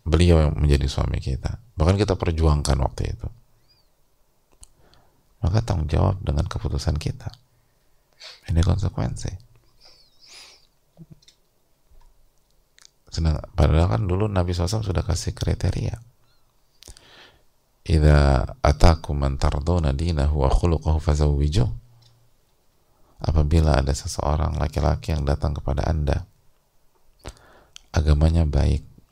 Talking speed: 75 wpm